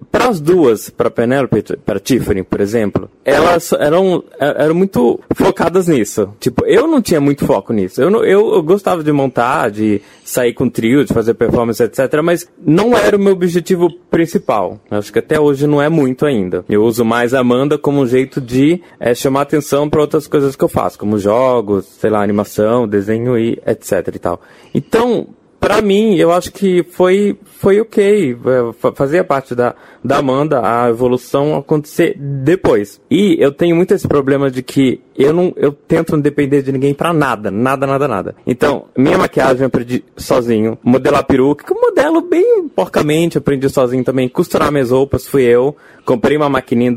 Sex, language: male, Portuguese